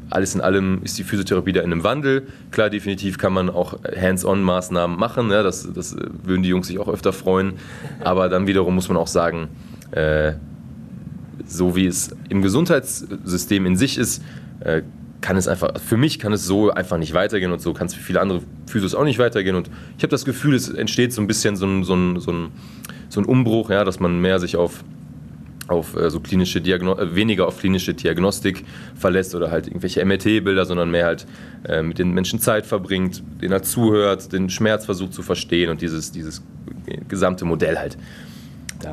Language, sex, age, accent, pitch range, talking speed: German, male, 30-49, German, 85-100 Hz, 195 wpm